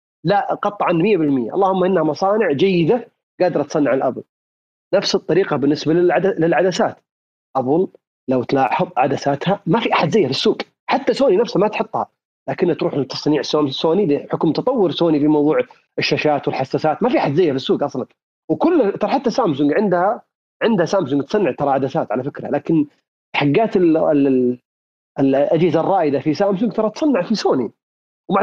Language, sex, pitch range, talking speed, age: Arabic, male, 140-190 Hz, 155 wpm, 30-49